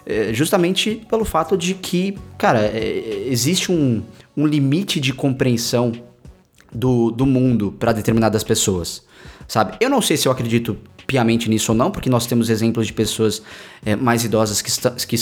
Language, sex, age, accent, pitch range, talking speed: Portuguese, male, 20-39, Brazilian, 110-150 Hz, 155 wpm